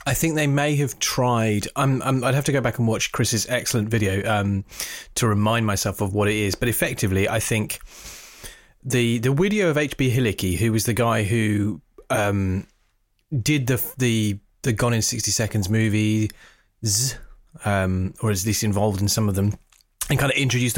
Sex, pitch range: male, 105-130 Hz